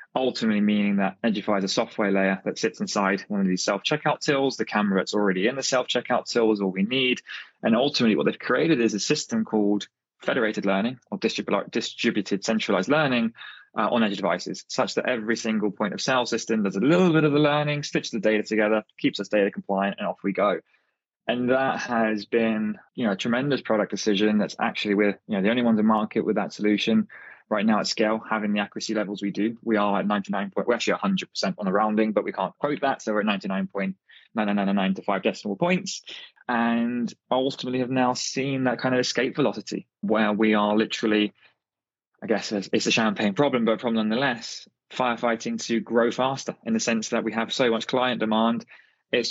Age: 20-39